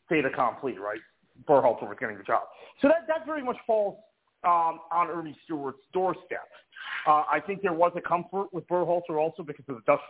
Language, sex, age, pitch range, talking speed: English, male, 40-59, 150-195 Hz, 195 wpm